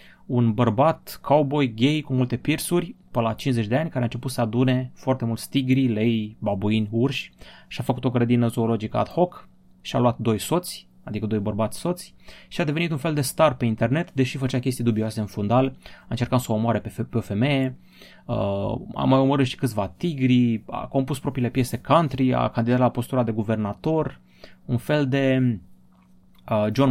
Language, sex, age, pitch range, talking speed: Romanian, male, 20-39, 105-130 Hz, 185 wpm